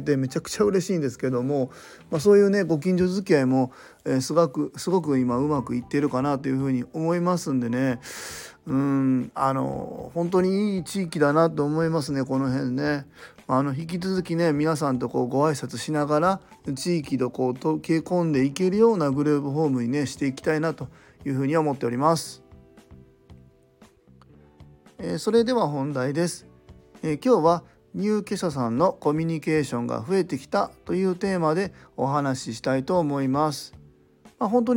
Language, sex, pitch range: Japanese, male, 130-175 Hz